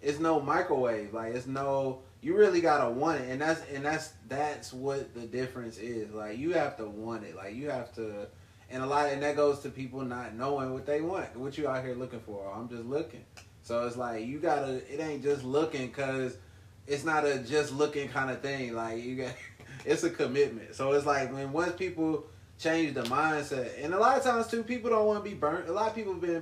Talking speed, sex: 240 wpm, male